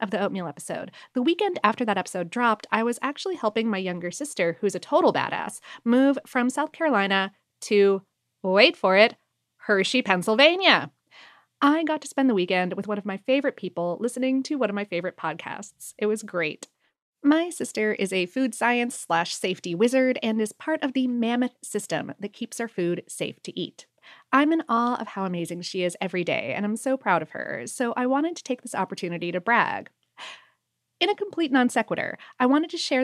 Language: English